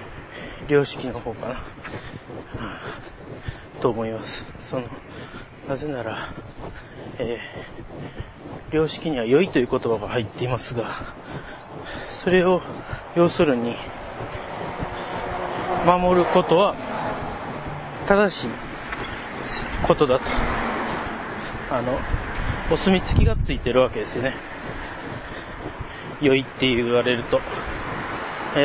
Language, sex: Japanese, male